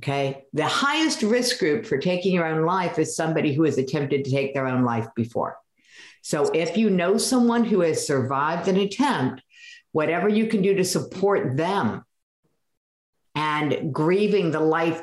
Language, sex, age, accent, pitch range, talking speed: English, female, 50-69, American, 155-205 Hz, 170 wpm